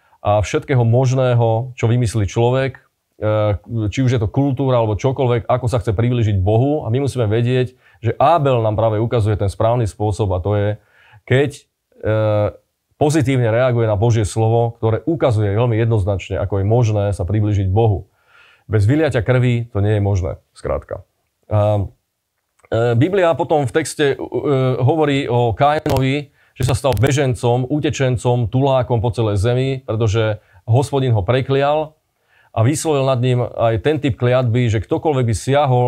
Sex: male